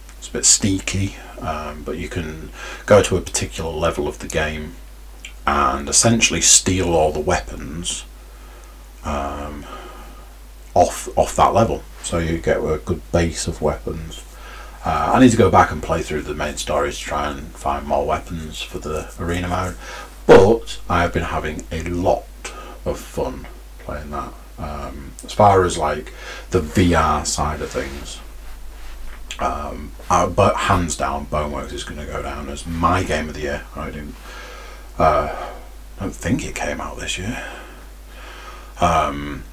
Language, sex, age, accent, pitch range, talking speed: English, male, 40-59, British, 70-85 Hz, 155 wpm